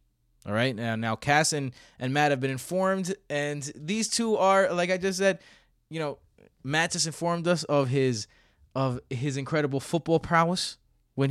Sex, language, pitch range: male, English, 115-170 Hz